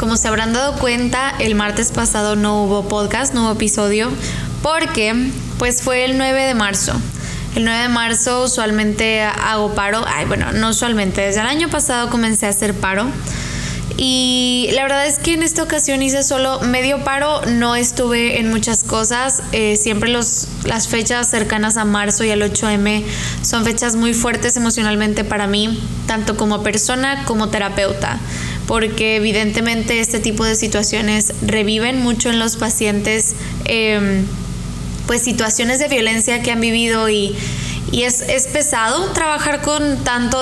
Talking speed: 160 wpm